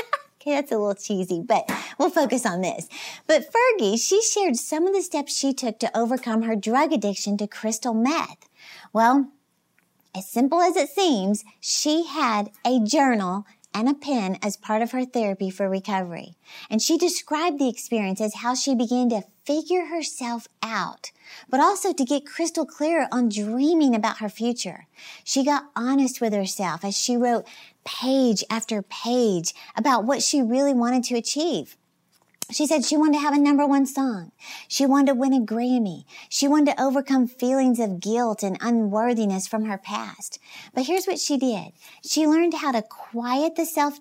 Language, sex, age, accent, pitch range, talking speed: English, female, 40-59, American, 215-290 Hz, 175 wpm